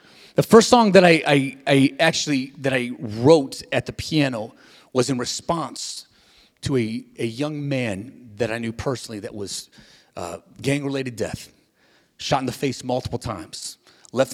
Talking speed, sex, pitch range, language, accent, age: 160 wpm, male, 130-175 Hz, English, American, 30-49